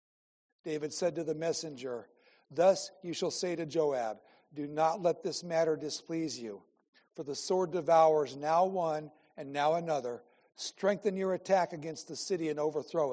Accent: American